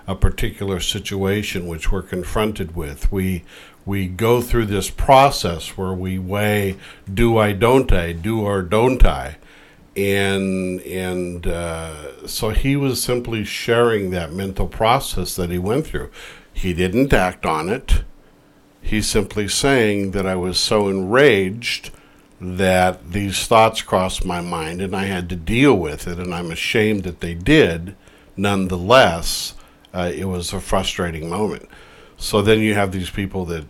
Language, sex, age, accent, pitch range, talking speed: English, male, 60-79, American, 90-105 Hz, 150 wpm